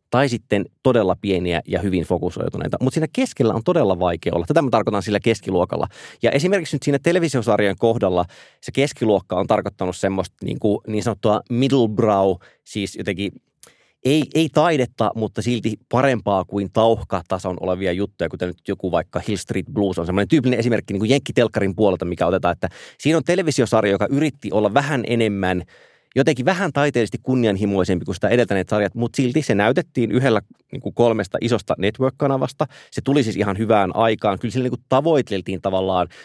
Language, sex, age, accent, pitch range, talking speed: Finnish, male, 30-49, native, 95-125 Hz, 165 wpm